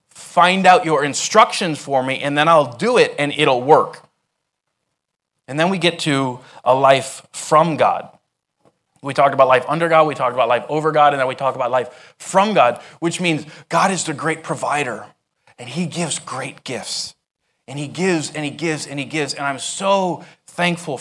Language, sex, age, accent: English, male, 30-49, American